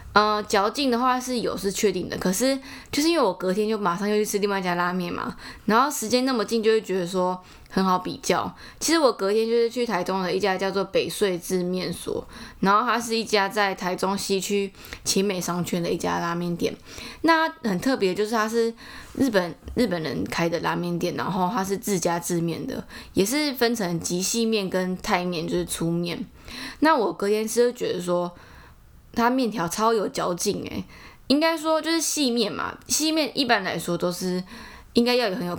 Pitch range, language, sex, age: 175-235 Hz, Chinese, female, 20-39